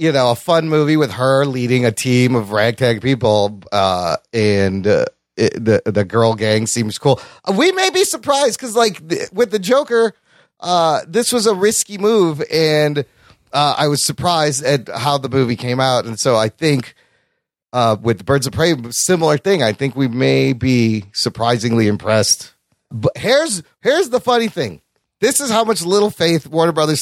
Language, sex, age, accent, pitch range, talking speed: English, male, 30-49, American, 125-205 Hz, 180 wpm